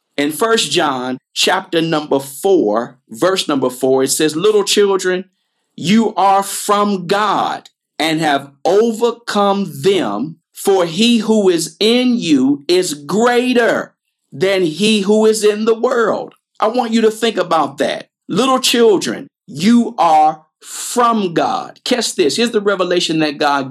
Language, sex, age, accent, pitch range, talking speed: English, male, 50-69, American, 155-230 Hz, 140 wpm